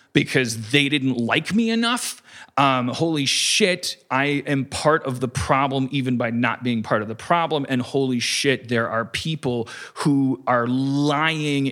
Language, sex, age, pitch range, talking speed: English, male, 30-49, 125-160 Hz, 165 wpm